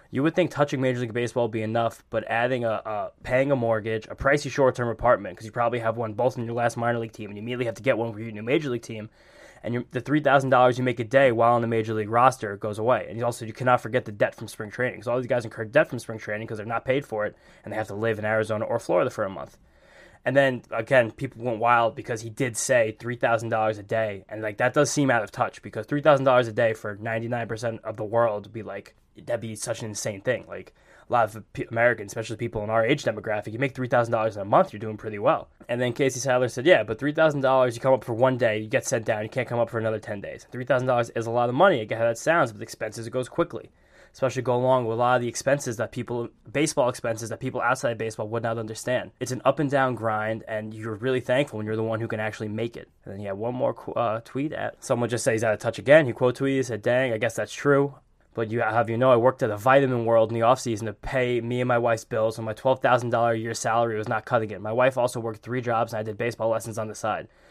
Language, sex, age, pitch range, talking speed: English, male, 10-29, 110-125 Hz, 280 wpm